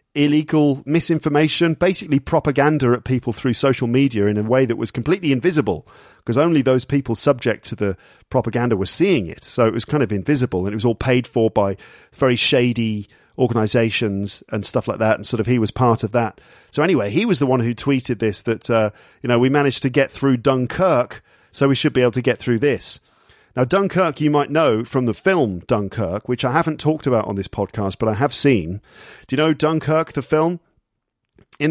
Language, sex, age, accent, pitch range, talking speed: English, male, 40-59, British, 115-145 Hz, 210 wpm